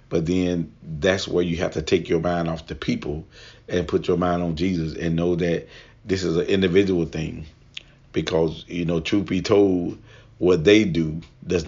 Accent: American